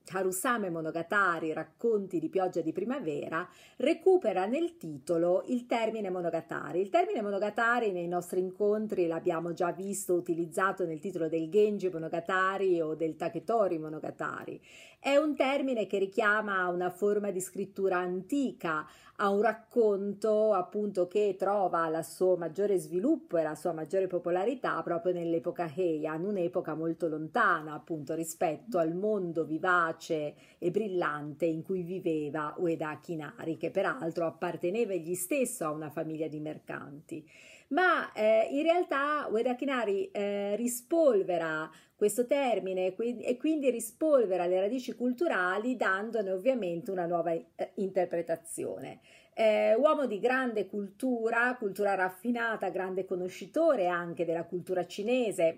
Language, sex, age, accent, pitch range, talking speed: Italian, female, 40-59, native, 170-220 Hz, 130 wpm